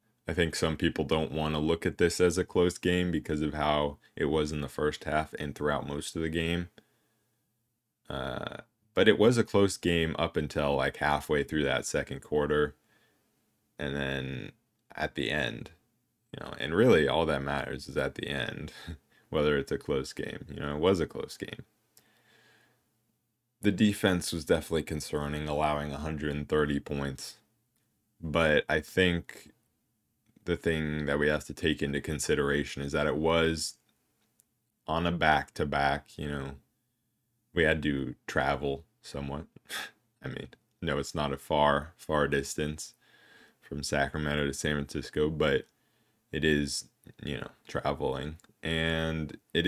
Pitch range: 75-85 Hz